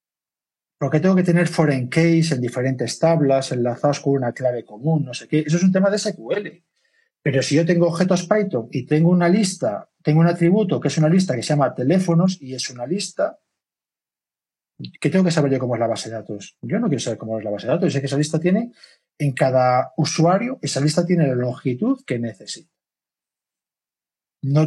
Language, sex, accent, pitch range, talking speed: Spanish, male, Spanish, 130-180 Hz, 210 wpm